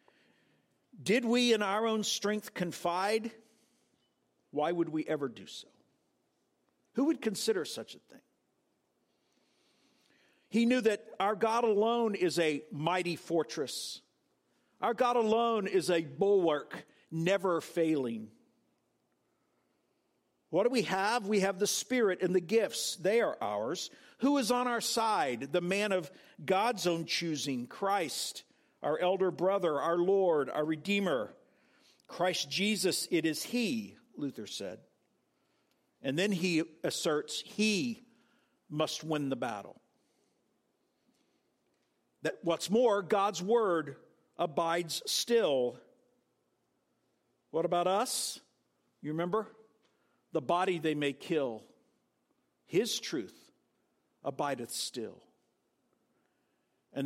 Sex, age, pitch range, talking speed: male, 50-69, 165-225 Hz, 115 wpm